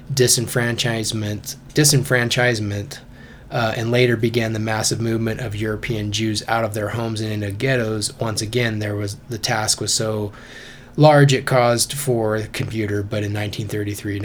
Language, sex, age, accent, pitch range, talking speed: English, male, 20-39, American, 110-125 Hz, 150 wpm